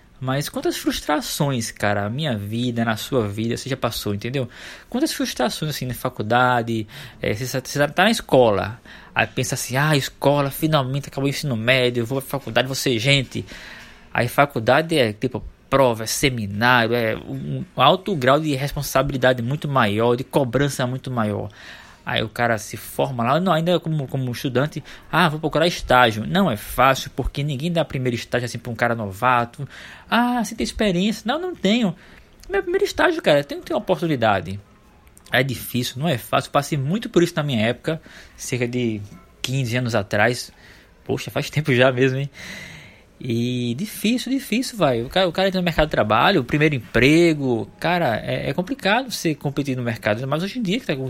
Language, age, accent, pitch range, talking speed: Portuguese, 20-39, Brazilian, 120-155 Hz, 180 wpm